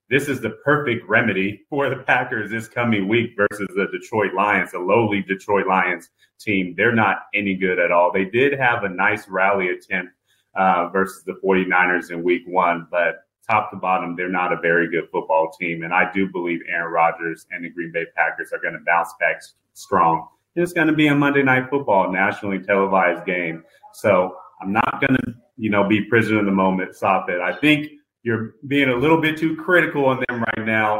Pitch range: 95-120 Hz